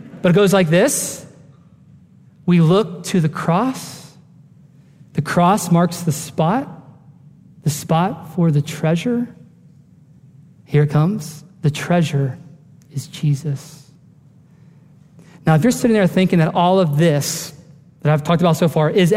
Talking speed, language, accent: 140 wpm, English, American